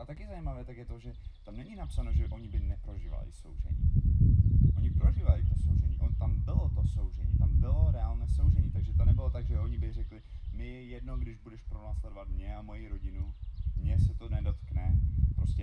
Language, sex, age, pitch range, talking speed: Czech, male, 30-49, 80-120 Hz, 195 wpm